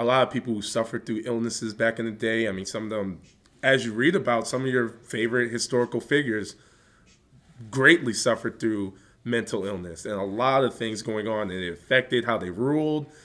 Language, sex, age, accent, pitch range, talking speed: English, male, 20-39, American, 110-130 Hz, 205 wpm